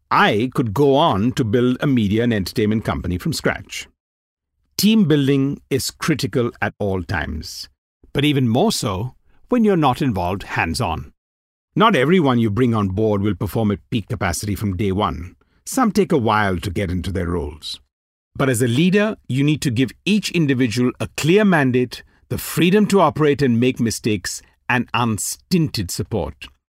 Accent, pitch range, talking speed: Indian, 95-140 Hz, 170 wpm